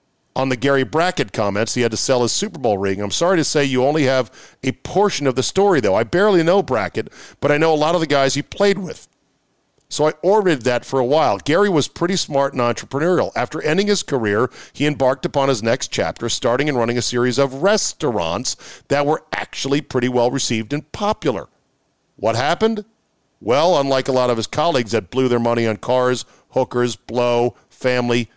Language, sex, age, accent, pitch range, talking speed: English, male, 50-69, American, 115-145 Hz, 205 wpm